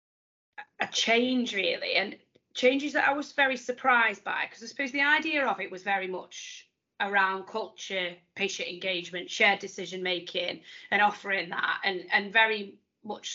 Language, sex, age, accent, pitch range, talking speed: English, female, 20-39, British, 190-245 Hz, 155 wpm